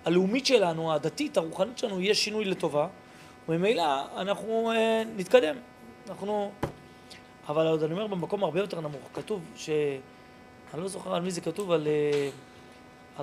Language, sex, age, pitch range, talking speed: Hebrew, male, 30-49, 165-225 Hz, 140 wpm